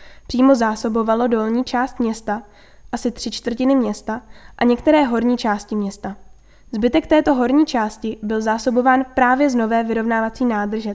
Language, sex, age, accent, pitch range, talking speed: Czech, female, 10-29, native, 220-260 Hz, 135 wpm